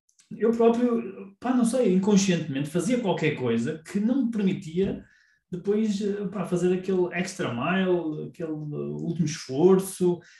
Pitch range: 135-185 Hz